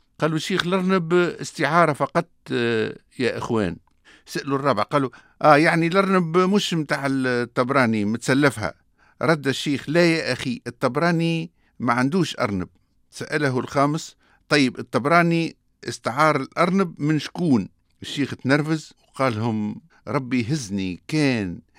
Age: 50-69